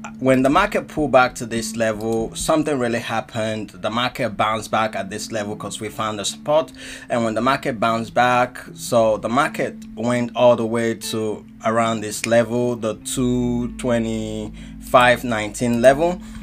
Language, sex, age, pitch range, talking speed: English, male, 20-39, 110-135 Hz, 155 wpm